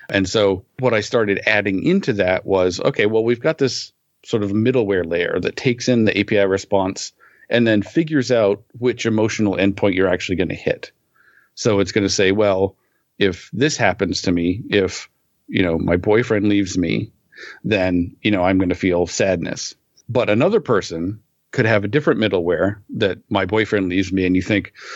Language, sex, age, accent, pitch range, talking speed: English, male, 50-69, American, 95-115 Hz, 190 wpm